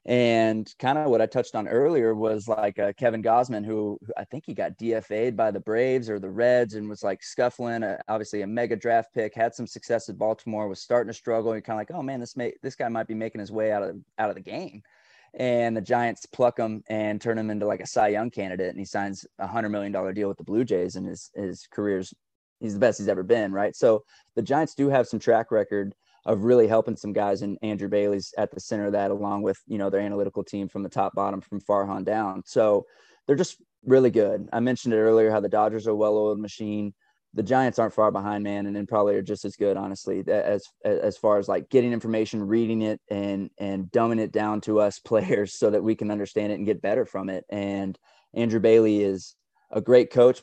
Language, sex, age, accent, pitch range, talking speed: English, male, 20-39, American, 100-115 Hz, 245 wpm